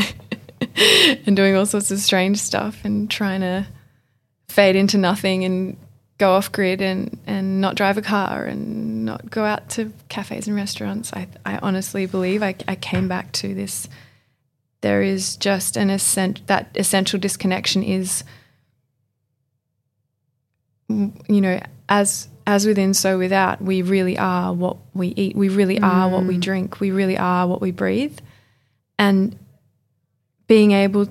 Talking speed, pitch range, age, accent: 150 wpm, 130-200 Hz, 20-39, Australian